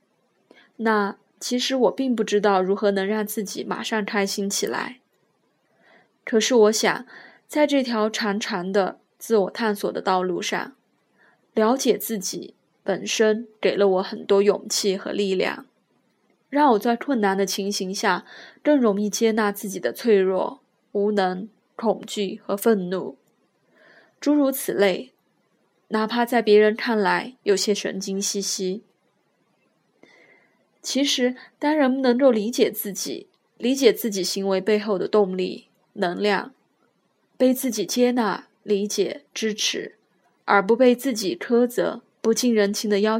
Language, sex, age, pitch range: Chinese, female, 20-39, 200-235 Hz